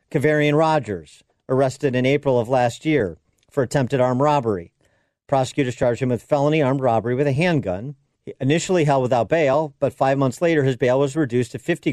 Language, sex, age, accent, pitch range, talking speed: English, male, 50-69, American, 125-150 Hz, 180 wpm